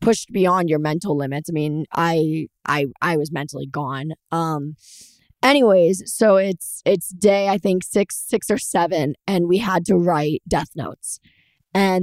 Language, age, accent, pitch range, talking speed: English, 20-39, American, 160-190 Hz, 165 wpm